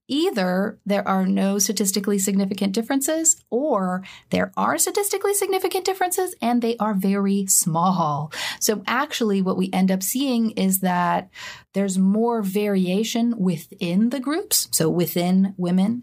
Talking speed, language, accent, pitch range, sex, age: 135 wpm, English, American, 190-280 Hz, female, 30-49